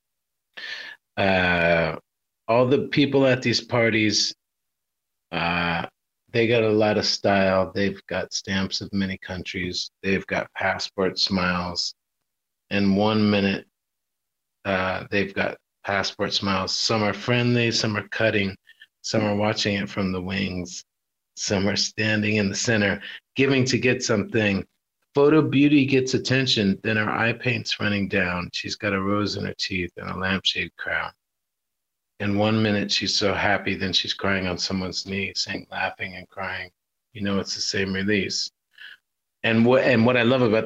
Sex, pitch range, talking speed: male, 95-110 Hz, 155 wpm